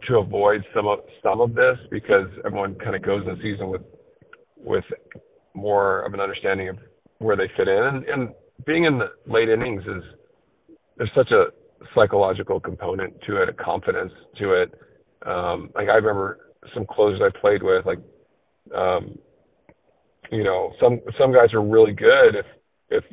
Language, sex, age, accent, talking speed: English, male, 40-59, American, 170 wpm